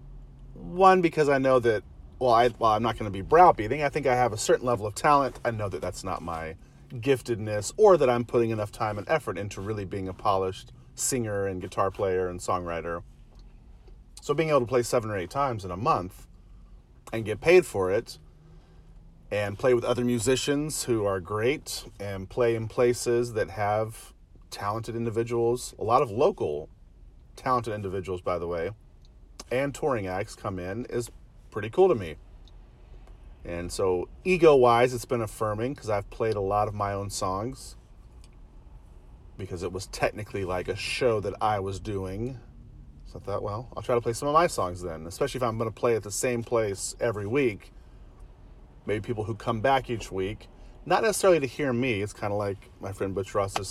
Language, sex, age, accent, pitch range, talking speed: English, male, 40-59, American, 95-125 Hz, 190 wpm